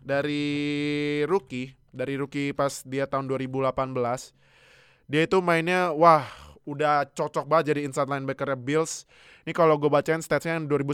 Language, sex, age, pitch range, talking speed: Indonesian, male, 20-39, 135-170 Hz, 135 wpm